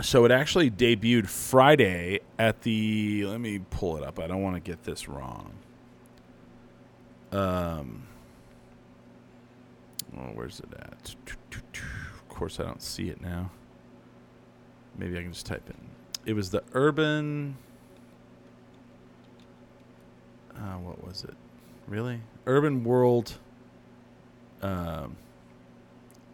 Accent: American